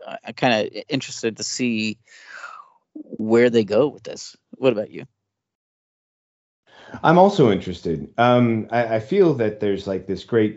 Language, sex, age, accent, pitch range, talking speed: English, male, 30-49, American, 85-115 Hz, 150 wpm